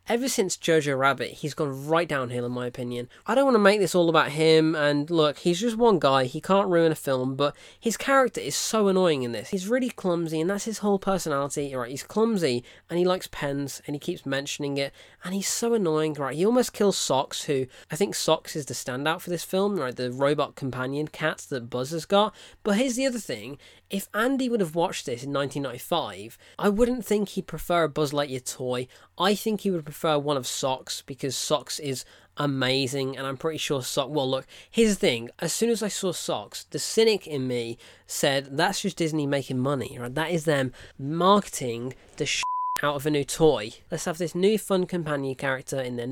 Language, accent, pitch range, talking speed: English, British, 135-195 Hz, 215 wpm